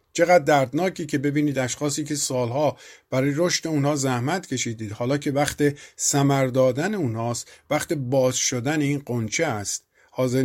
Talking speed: 140 wpm